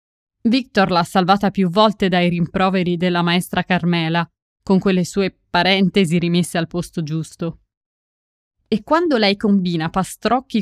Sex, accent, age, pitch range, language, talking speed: female, native, 20-39, 170-200 Hz, Italian, 130 wpm